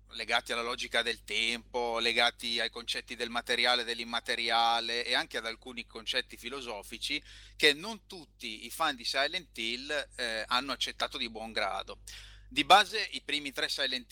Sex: male